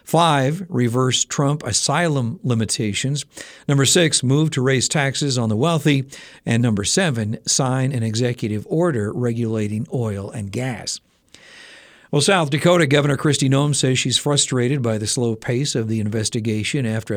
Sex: male